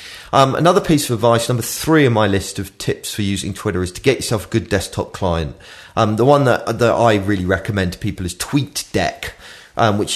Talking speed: 220 wpm